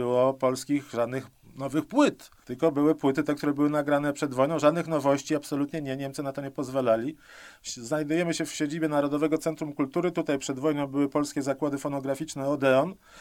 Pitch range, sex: 135-160 Hz, male